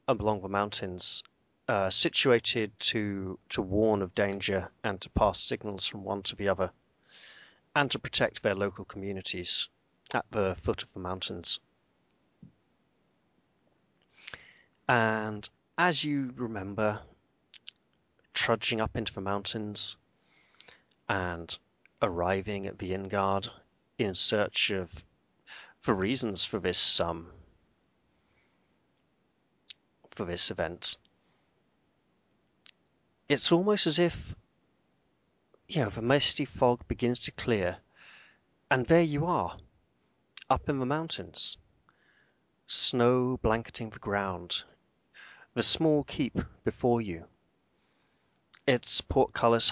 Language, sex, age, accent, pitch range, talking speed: English, male, 30-49, British, 95-120 Hz, 105 wpm